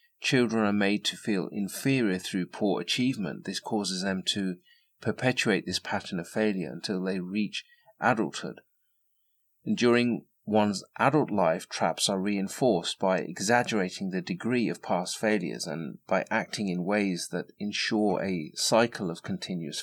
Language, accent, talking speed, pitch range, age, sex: English, British, 140 wpm, 95-115 Hz, 40-59, male